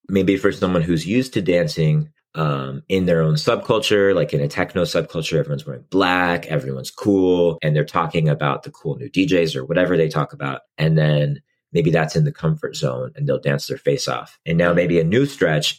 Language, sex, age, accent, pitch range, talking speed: English, male, 30-49, American, 75-100 Hz, 210 wpm